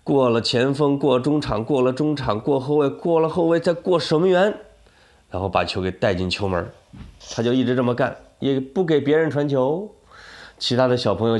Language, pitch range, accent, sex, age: Chinese, 105-150 Hz, native, male, 20-39